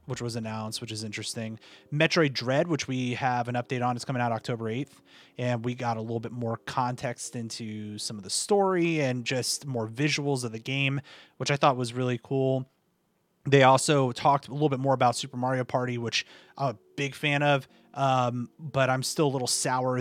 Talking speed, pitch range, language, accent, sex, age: 205 wpm, 125-155 Hz, English, American, male, 30-49